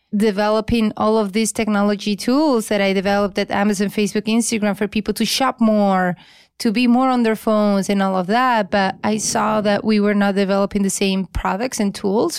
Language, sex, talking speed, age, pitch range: English, female, 200 wpm, 20-39, 195-220 Hz